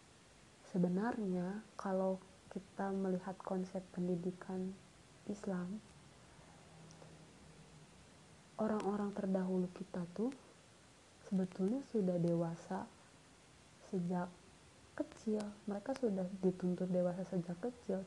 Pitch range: 185-230 Hz